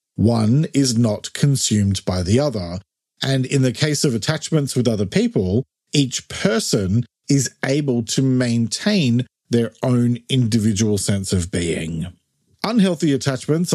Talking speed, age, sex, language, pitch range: 130 wpm, 40-59, male, English, 110-150 Hz